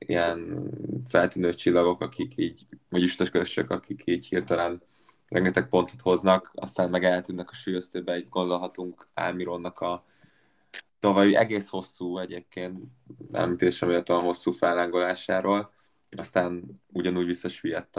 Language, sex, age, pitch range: Hungarian, male, 20-39, 90-95 Hz